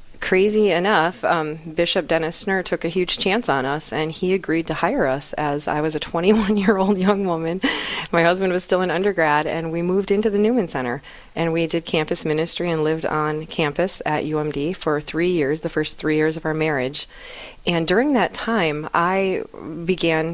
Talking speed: 190 wpm